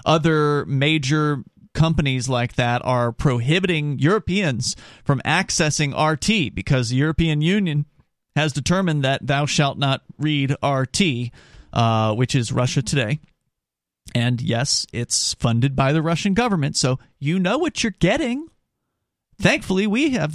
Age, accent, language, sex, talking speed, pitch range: 40-59, American, English, male, 135 wpm, 135-185 Hz